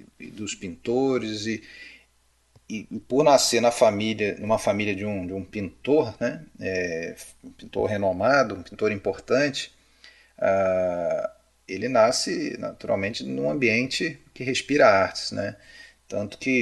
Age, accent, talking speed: 30-49, Brazilian, 115 wpm